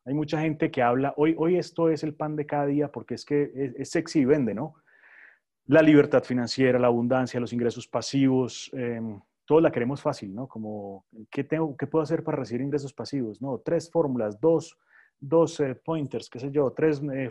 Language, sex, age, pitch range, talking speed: Spanish, male, 30-49, 125-160 Hz, 205 wpm